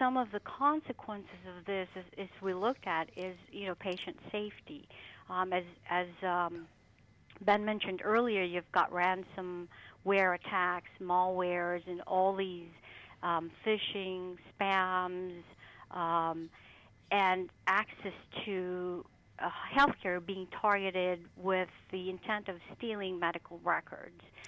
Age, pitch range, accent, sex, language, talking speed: 50-69, 180-210 Hz, American, female, English, 120 wpm